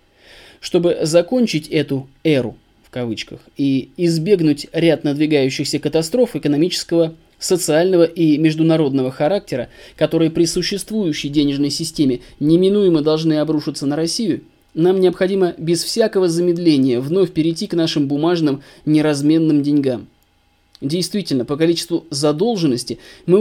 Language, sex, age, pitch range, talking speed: Russian, male, 20-39, 150-185 Hz, 110 wpm